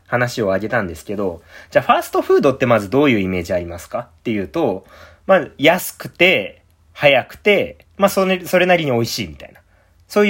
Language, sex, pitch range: Japanese, male, 100-150 Hz